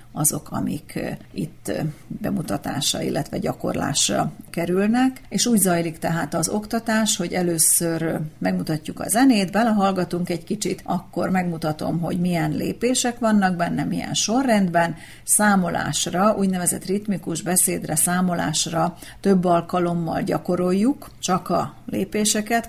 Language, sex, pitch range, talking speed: Hungarian, female, 170-200 Hz, 110 wpm